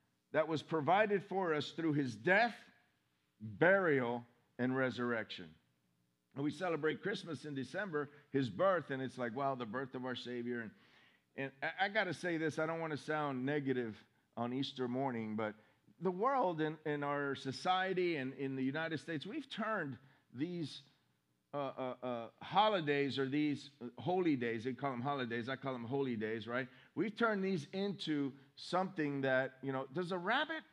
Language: English